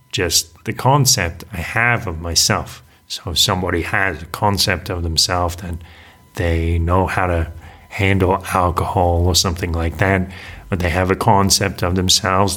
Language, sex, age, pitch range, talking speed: English, male, 30-49, 90-105 Hz, 160 wpm